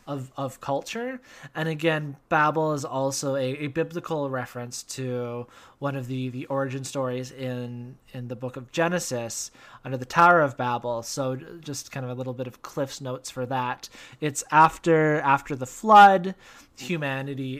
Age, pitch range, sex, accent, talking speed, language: 20-39, 125-145 Hz, male, American, 165 wpm, English